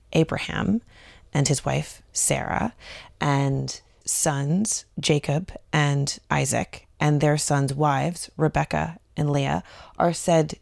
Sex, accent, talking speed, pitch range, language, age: female, American, 105 wpm, 135-160 Hz, English, 30-49